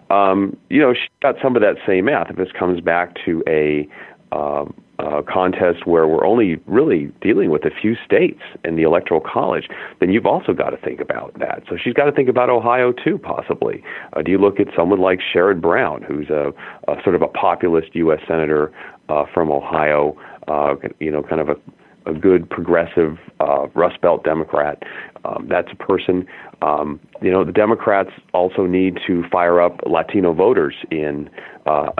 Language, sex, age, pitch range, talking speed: English, male, 40-59, 80-95 Hz, 190 wpm